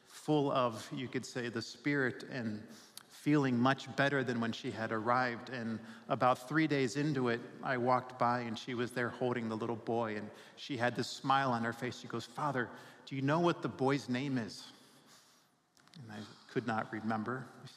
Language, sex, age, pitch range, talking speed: English, male, 50-69, 115-130 Hz, 195 wpm